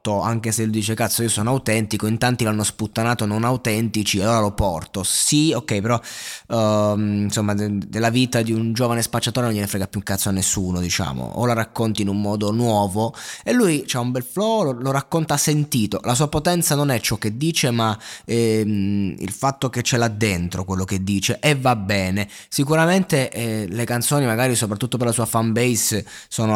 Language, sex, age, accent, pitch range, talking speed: Italian, male, 20-39, native, 110-130 Hz, 205 wpm